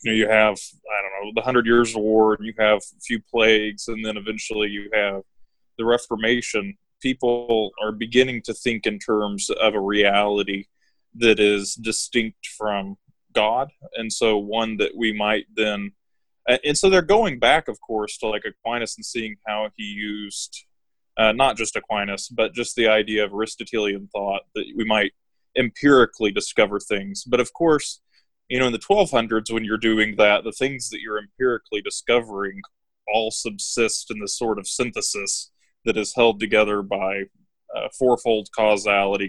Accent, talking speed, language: American, 170 wpm, English